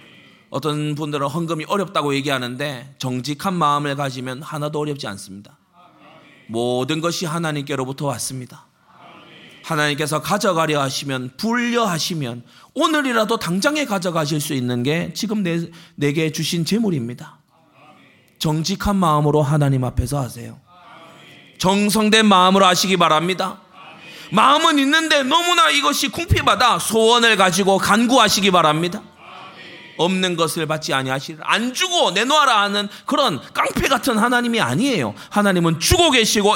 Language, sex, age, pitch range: Korean, male, 30-49, 145-200 Hz